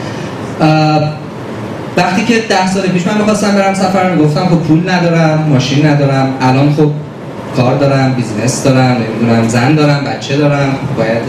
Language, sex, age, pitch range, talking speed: Persian, male, 30-49, 130-175 Hz, 150 wpm